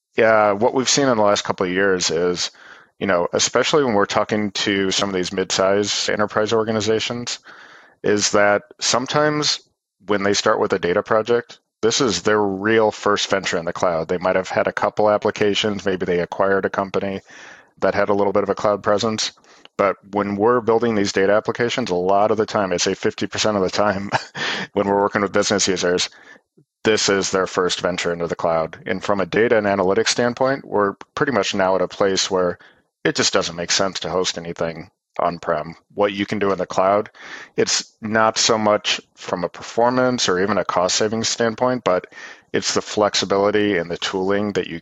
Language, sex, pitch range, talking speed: English, male, 95-110 Hz, 200 wpm